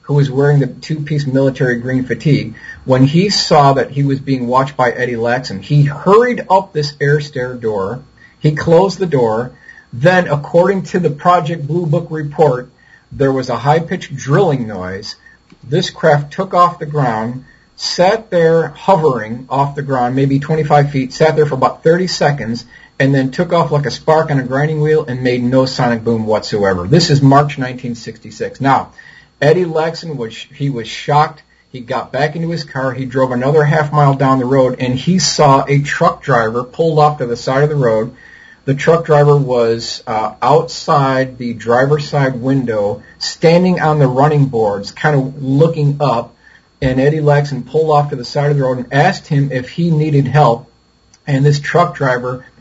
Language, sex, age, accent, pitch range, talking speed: English, male, 40-59, American, 125-155 Hz, 185 wpm